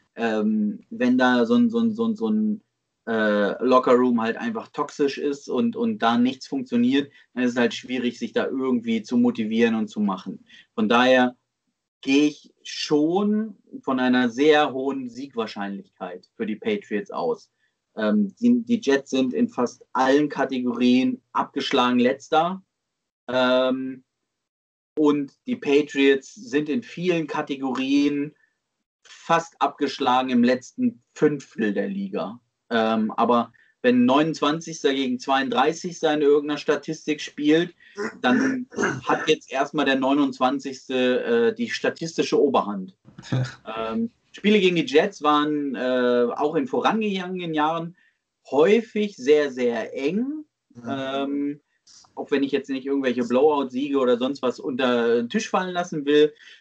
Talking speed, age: 135 wpm, 30-49